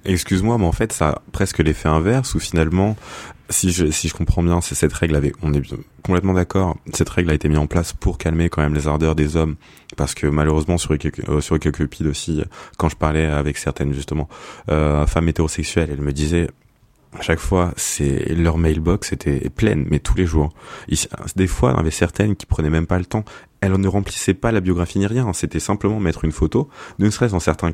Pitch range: 80-100 Hz